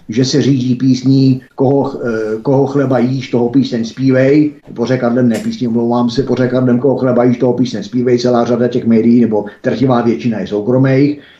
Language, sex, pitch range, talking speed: Czech, male, 110-125 Hz, 205 wpm